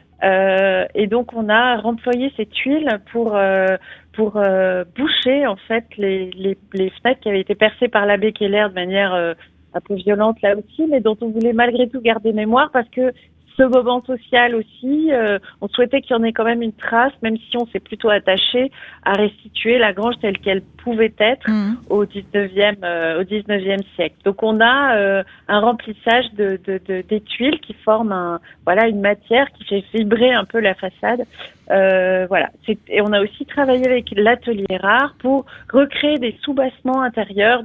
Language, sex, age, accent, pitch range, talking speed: French, female, 40-59, French, 195-240 Hz, 190 wpm